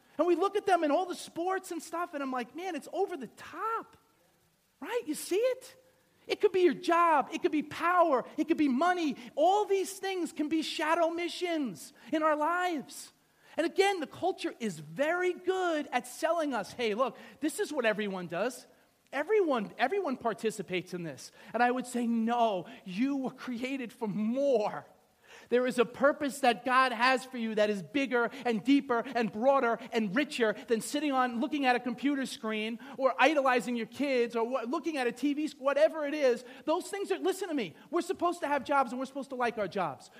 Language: English